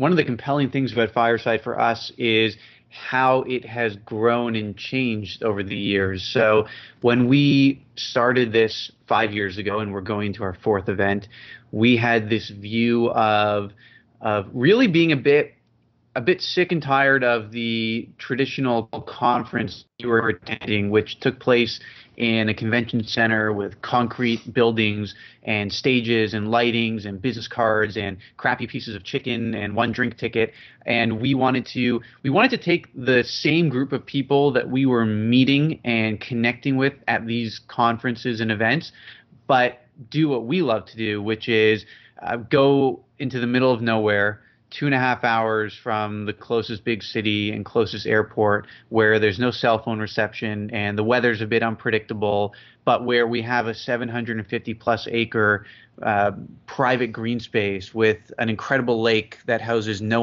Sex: male